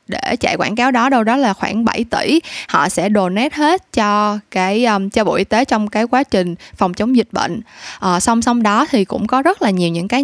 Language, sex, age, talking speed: Vietnamese, female, 10-29, 240 wpm